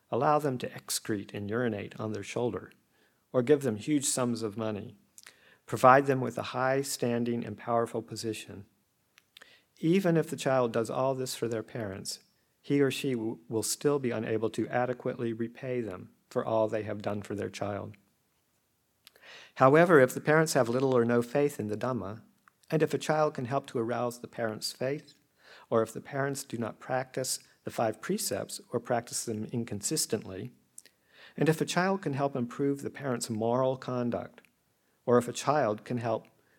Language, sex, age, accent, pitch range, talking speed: English, male, 50-69, American, 110-135 Hz, 175 wpm